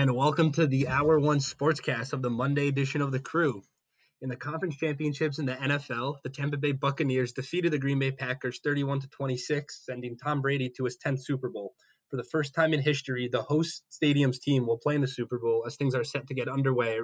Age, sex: 20-39, male